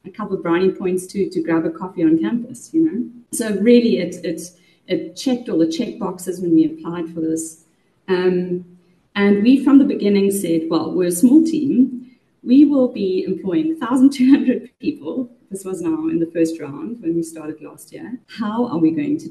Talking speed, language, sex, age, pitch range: 205 wpm, English, female, 30-49, 170-240 Hz